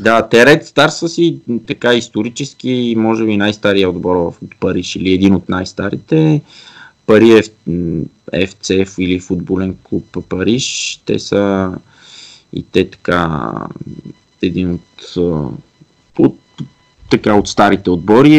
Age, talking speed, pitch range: 20-39, 115 wpm, 95-115 Hz